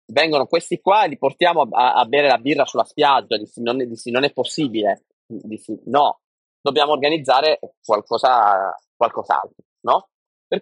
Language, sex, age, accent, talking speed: Italian, male, 20-39, native, 145 wpm